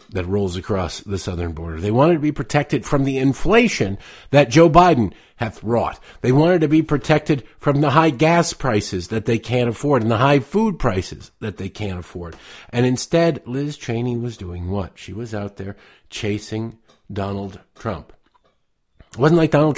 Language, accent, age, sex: English, American, 50-69, male